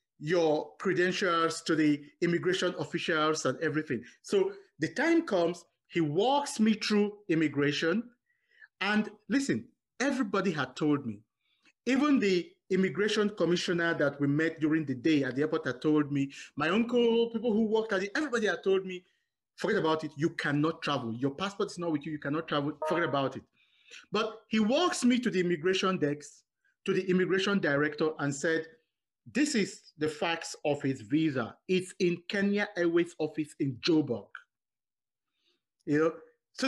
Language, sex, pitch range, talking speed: English, male, 150-220 Hz, 160 wpm